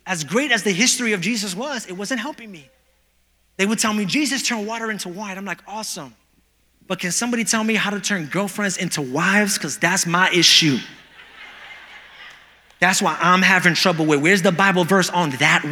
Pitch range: 200-285 Hz